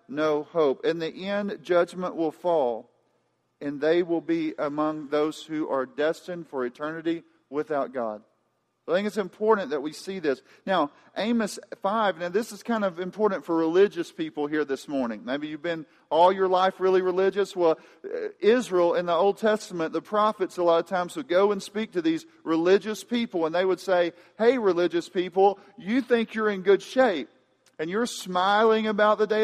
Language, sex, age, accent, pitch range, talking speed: English, male, 40-59, American, 175-215 Hz, 185 wpm